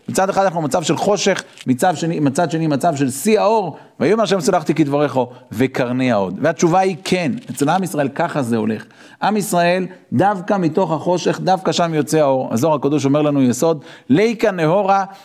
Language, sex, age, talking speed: Hebrew, male, 50-69, 175 wpm